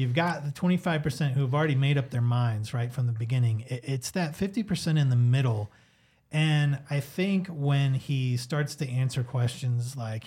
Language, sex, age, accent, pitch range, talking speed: English, male, 30-49, American, 125-155 Hz, 180 wpm